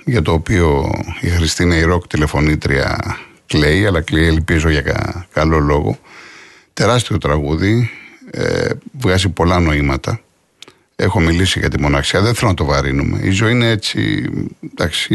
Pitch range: 80-115 Hz